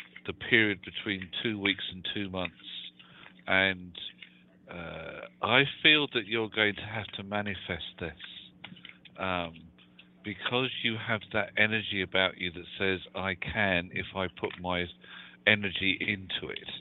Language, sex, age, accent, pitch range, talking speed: English, male, 50-69, British, 90-105 Hz, 140 wpm